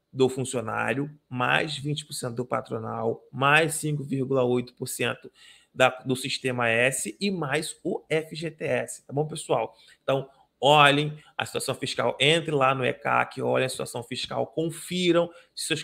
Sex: male